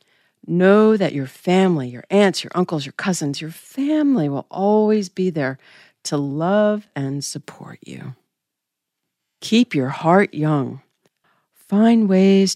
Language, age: English, 50-69